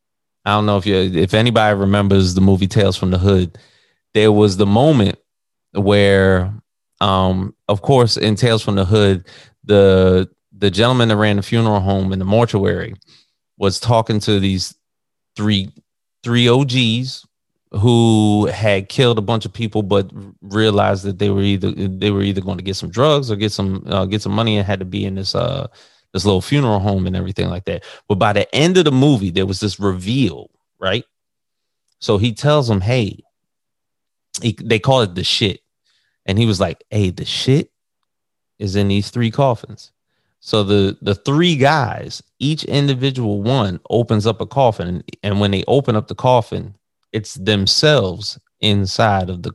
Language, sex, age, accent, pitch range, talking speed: English, male, 30-49, American, 95-115 Hz, 175 wpm